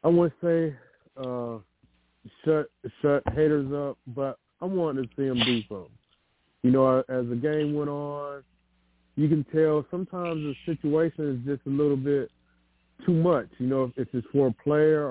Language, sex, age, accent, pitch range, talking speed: English, male, 20-39, American, 120-145 Hz, 175 wpm